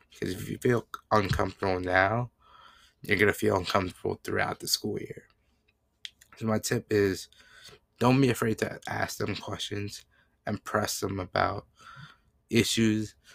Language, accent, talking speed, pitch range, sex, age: English, American, 140 wpm, 95-110 Hz, male, 20-39